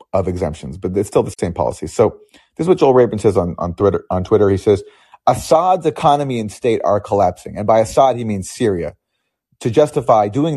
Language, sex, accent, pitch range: English, male, American, 105-150 Hz